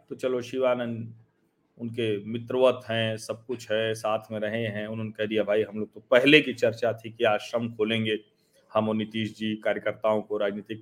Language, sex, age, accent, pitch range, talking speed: Hindi, male, 40-59, native, 115-165 Hz, 190 wpm